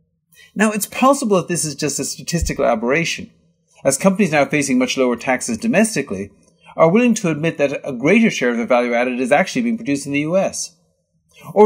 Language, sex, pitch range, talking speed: English, male, 135-205 Hz, 195 wpm